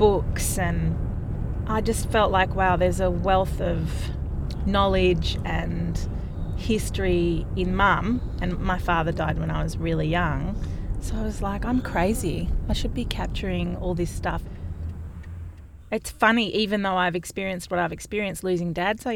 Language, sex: English, female